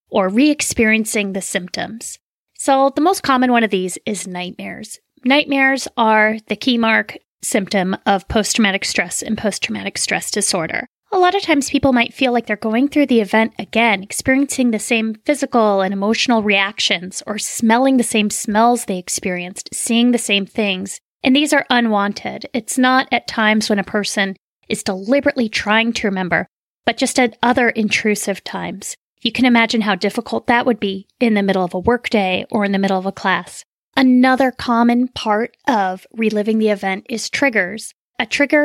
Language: English